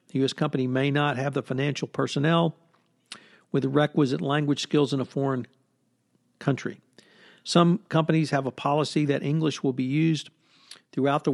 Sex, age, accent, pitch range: male, 50-69, American, 130-155 Hz